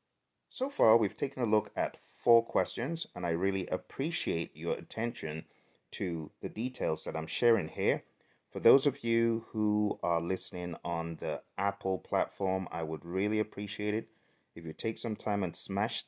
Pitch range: 95-115 Hz